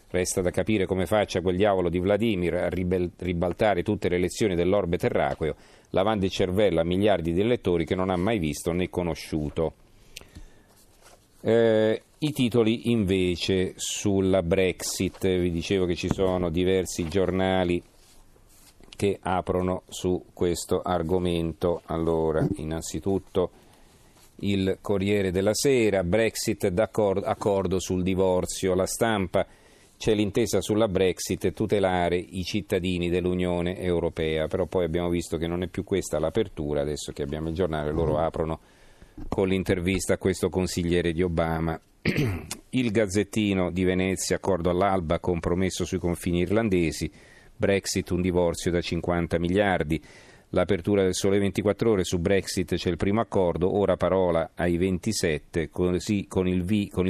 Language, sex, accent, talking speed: Italian, male, native, 130 wpm